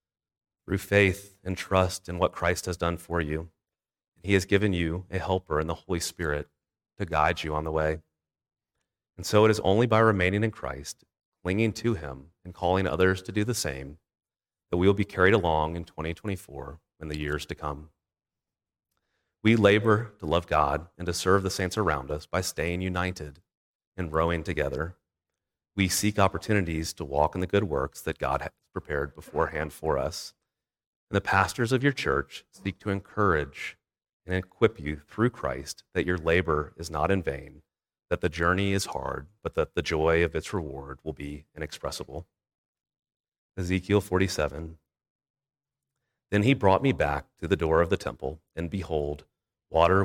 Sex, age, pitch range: male, 30-49, 80-95 Hz